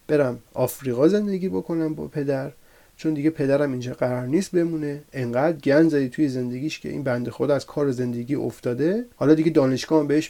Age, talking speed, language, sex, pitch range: 30-49, 180 wpm, Persian, male, 130-175 Hz